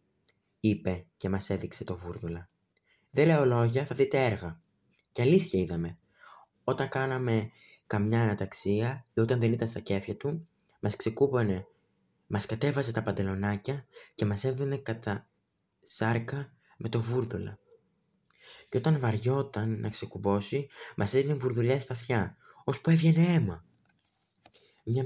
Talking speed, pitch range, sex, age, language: 130 wpm, 100-130 Hz, male, 20-39, Greek